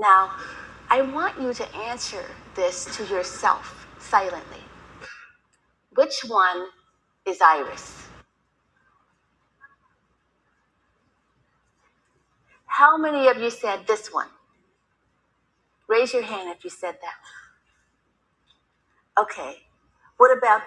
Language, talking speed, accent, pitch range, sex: English, 90 wpm, American, 215-335 Hz, female